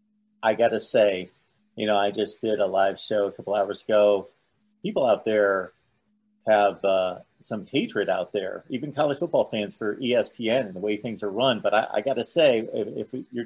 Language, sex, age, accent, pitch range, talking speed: English, male, 40-59, American, 105-130 Hz, 200 wpm